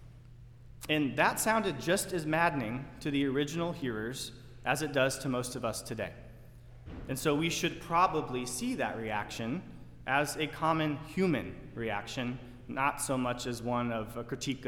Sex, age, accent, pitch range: male, 30-49, American, 120-150 Hz